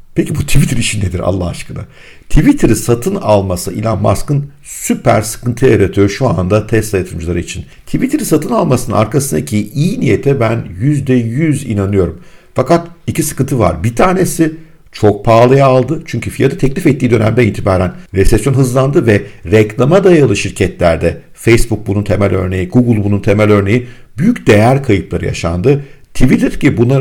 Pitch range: 105-140 Hz